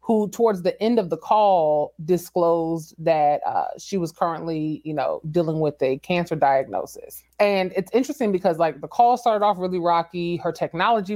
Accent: American